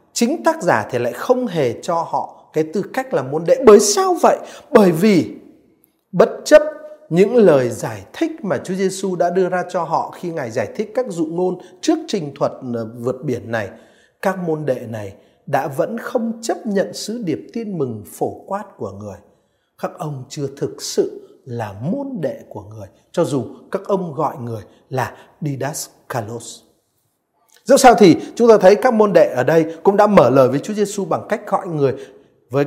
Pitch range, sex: 145-220 Hz, male